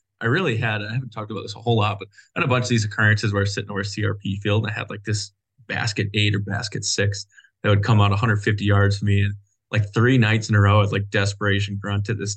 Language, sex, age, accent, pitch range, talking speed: English, male, 20-39, American, 100-115 Hz, 285 wpm